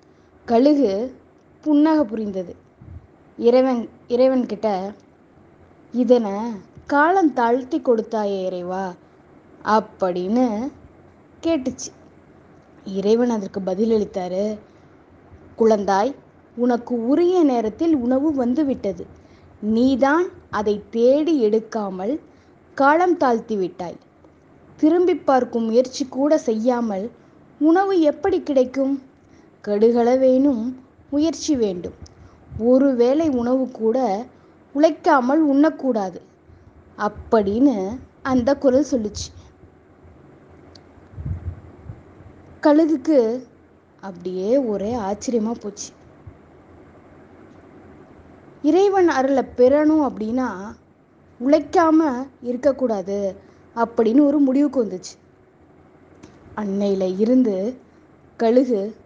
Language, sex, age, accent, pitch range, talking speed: Tamil, female, 20-39, native, 205-280 Hz, 65 wpm